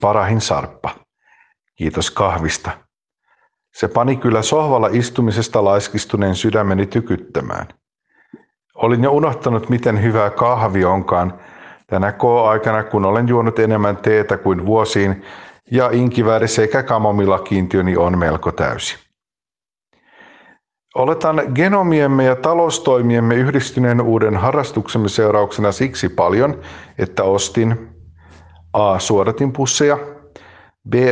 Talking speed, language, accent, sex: 100 wpm, Finnish, native, male